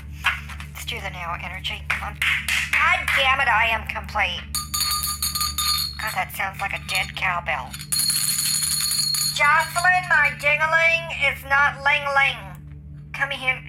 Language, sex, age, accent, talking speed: English, male, 50-69, American, 120 wpm